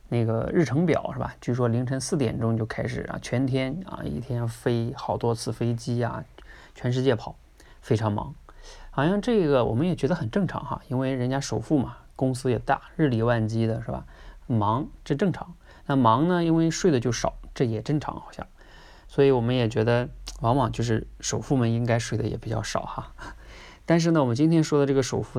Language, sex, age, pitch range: Chinese, male, 20-39, 115-155 Hz